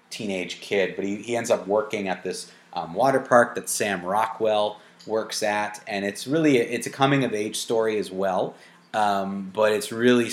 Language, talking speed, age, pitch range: English, 200 wpm, 30-49, 95-110 Hz